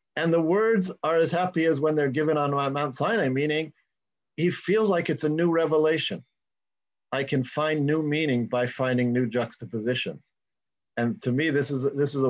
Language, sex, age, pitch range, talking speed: English, male, 50-69, 130-160 Hz, 185 wpm